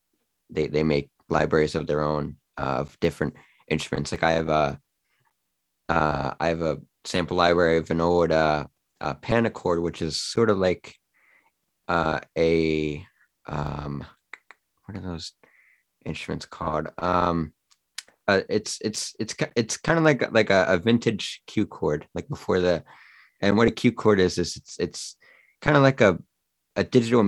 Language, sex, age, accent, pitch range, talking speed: English, male, 20-39, American, 80-100 Hz, 160 wpm